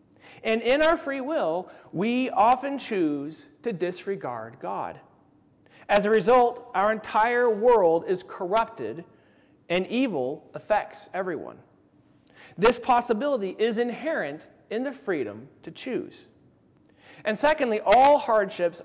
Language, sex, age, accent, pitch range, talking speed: English, male, 40-59, American, 170-250 Hz, 115 wpm